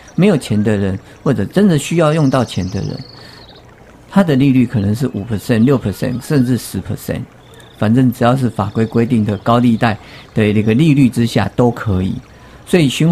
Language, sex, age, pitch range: Chinese, male, 50-69, 110-140 Hz